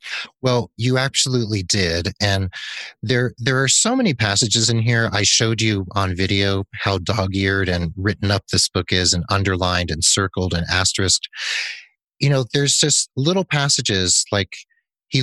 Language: English